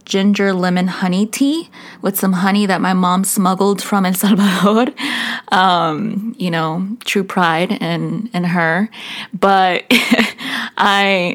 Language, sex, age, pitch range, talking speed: English, female, 20-39, 180-215 Hz, 125 wpm